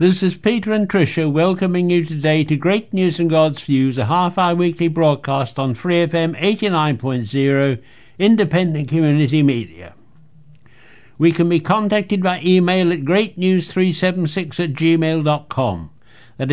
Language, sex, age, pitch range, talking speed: English, male, 60-79, 135-185 Hz, 135 wpm